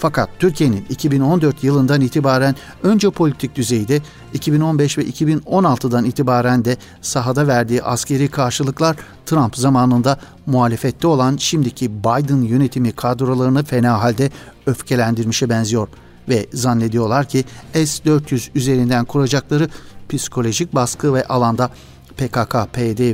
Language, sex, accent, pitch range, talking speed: Turkish, male, native, 120-145 Hz, 105 wpm